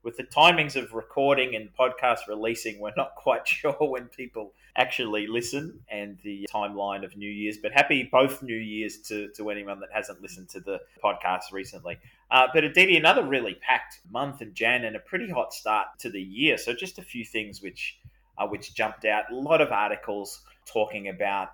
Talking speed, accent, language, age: 195 wpm, Australian, English, 30-49